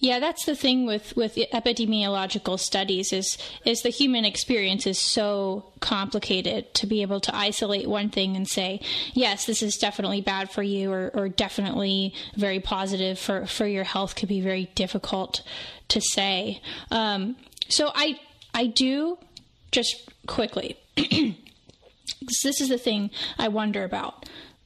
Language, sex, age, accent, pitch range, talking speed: English, female, 10-29, American, 205-250 Hz, 150 wpm